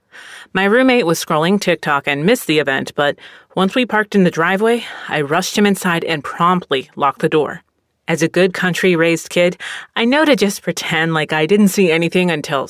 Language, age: English, 30-49